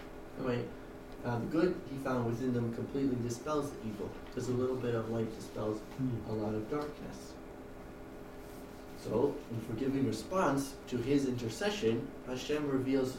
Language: English